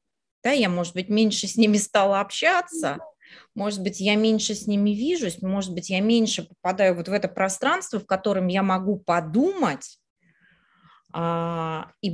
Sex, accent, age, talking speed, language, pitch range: female, native, 20-39, 155 wpm, Russian, 180-250 Hz